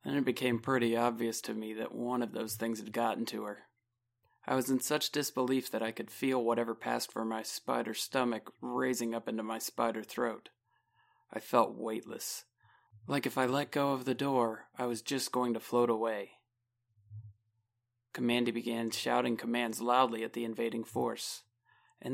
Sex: male